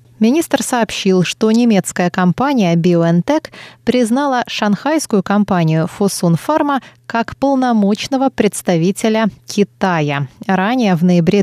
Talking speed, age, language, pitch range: 95 wpm, 20-39, Russian, 175-220 Hz